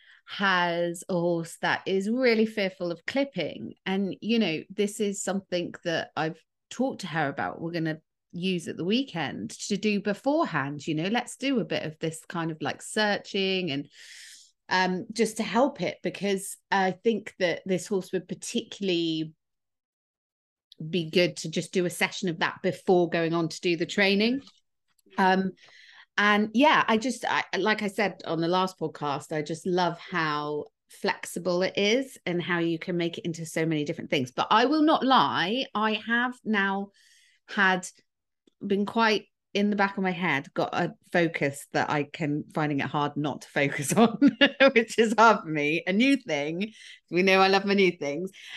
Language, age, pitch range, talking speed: English, 30-49, 165-210 Hz, 180 wpm